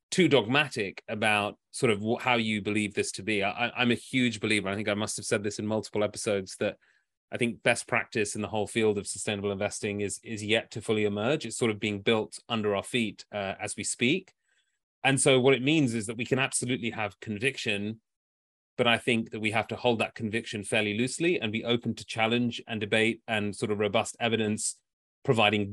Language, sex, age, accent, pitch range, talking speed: English, male, 30-49, British, 105-120 Hz, 215 wpm